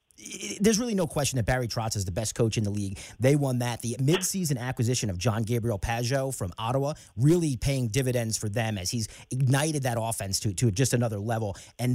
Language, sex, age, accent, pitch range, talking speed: English, male, 30-49, American, 115-160 Hz, 215 wpm